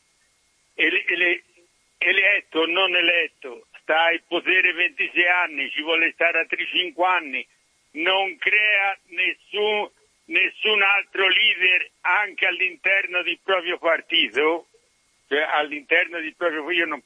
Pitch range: 160-190 Hz